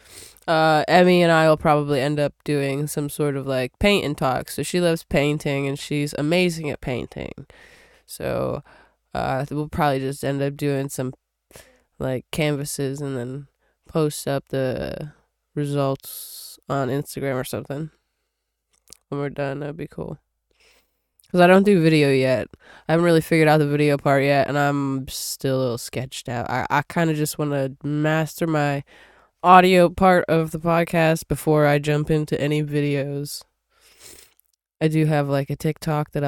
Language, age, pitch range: English, 20-39, 135-160 Hz